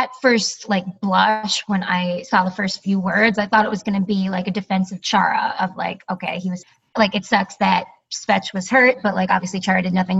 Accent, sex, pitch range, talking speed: American, female, 185-215 Hz, 235 wpm